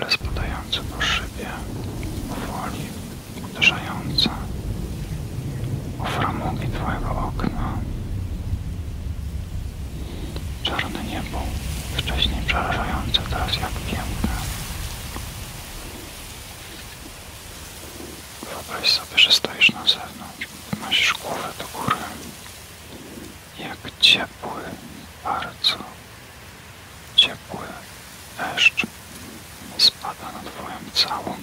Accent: native